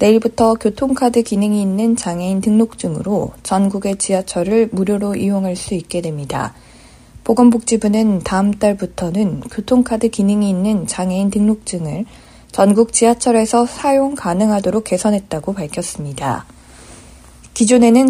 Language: Korean